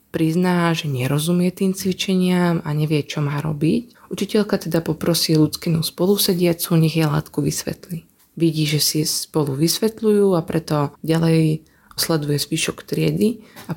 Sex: female